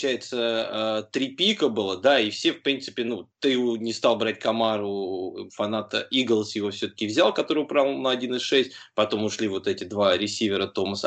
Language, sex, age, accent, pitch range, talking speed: Russian, male, 20-39, native, 110-150 Hz, 170 wpm